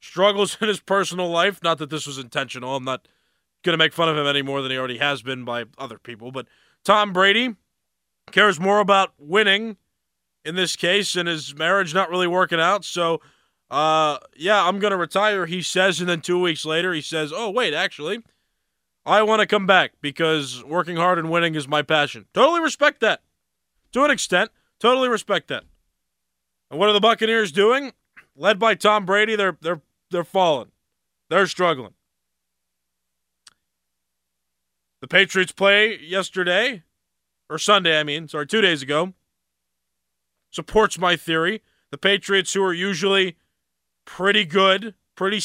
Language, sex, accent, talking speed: English, male, American, 160 wpm